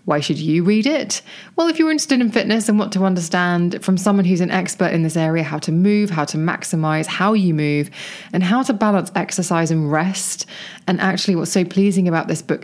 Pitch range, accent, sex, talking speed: 160-195 Hz, British, female, 225 wpm